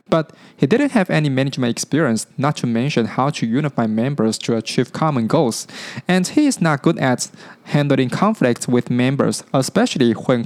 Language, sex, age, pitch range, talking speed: English, male, 20-39, 125-175 Hz, 170 wpm